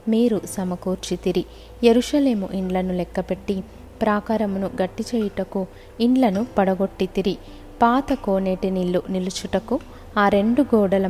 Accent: native